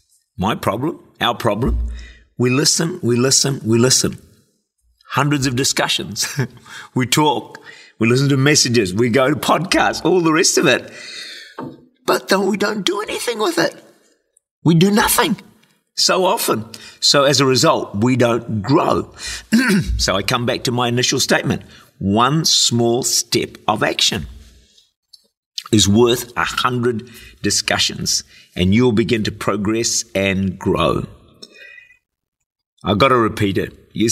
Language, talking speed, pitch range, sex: English, 140 wpm, 105-145 Hz, male